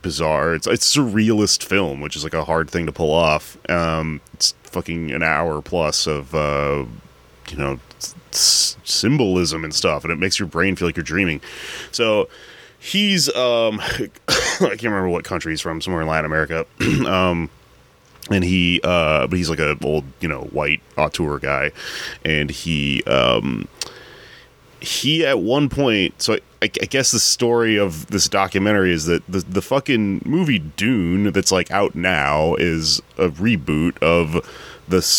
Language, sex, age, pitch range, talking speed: English, male, 30-49, 75-95 Hz, 165 wpm